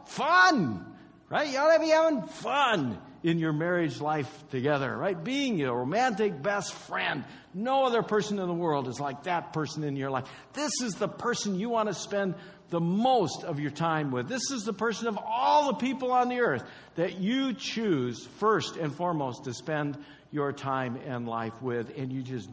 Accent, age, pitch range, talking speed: American, 60-79, 130-205 Hz, 195 wpm